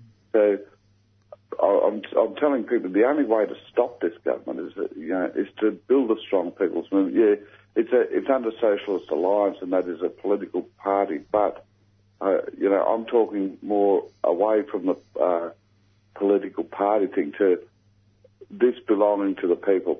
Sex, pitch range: male, 95-120 Hz